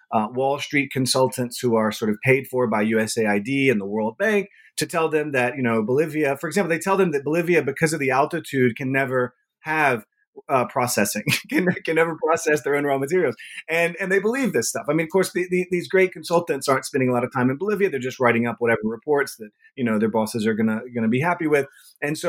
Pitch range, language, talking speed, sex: 120-165 Hz, English, 240 wpm, male